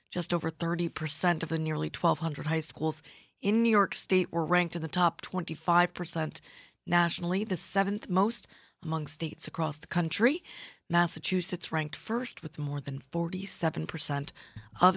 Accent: American